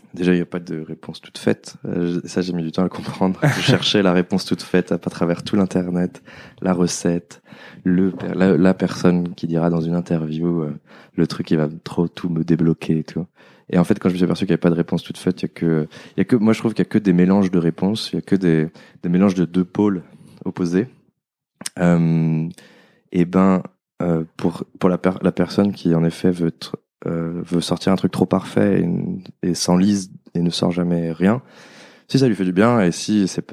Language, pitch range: French, 85-95 Hz